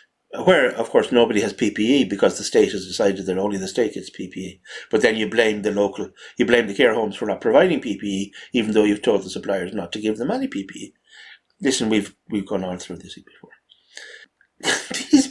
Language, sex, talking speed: English, male, 210 wpm